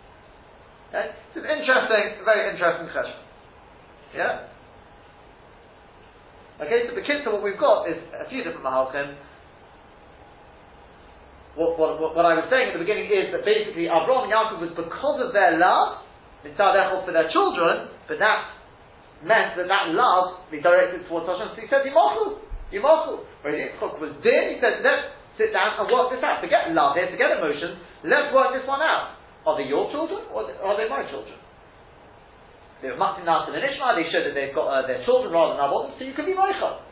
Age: 40-59